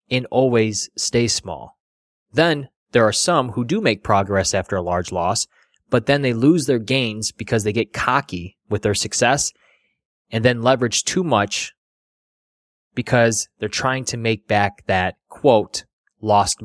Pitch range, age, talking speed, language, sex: 100-125 Hz, 20-39, 155 wpm, English, male